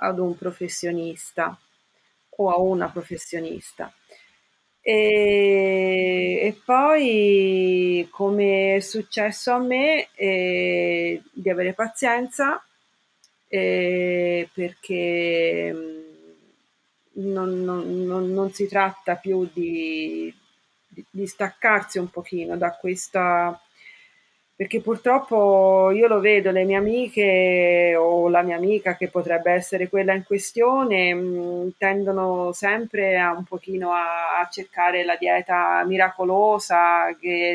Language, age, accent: Italian, 40-59, native